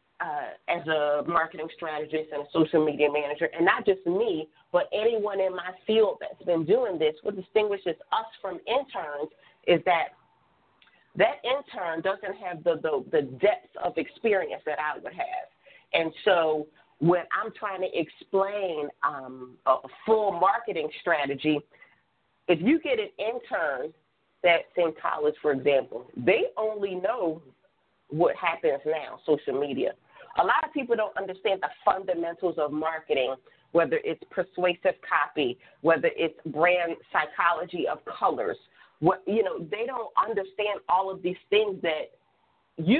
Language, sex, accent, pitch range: English, female, American, 165-235 Hz